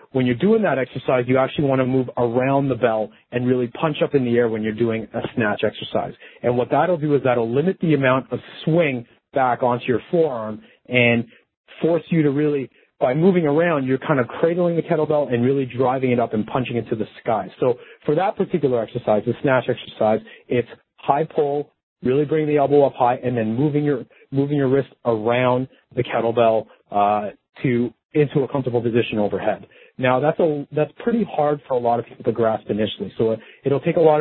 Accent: American